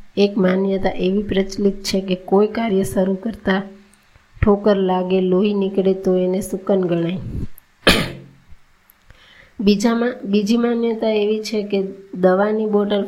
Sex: female